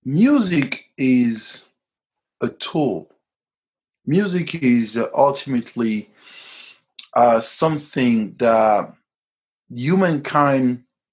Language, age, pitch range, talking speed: English, 30-49, 125-185 Hz, 60 wpm